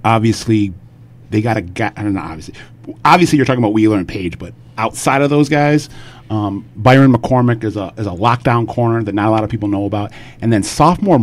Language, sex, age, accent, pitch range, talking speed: English, male, 30-49, American, 100-125 Hz, 215 wpm